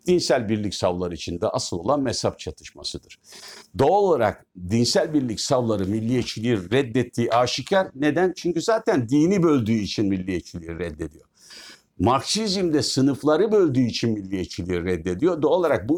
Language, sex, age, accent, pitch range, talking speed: Turkish, male, 60-79, native, 90-135 Hz, 130 wpm